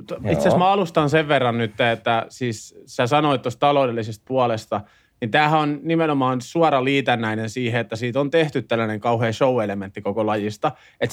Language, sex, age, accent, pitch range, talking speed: Finnish, male, 30-49, native, 115-160 Hz, 165 wpm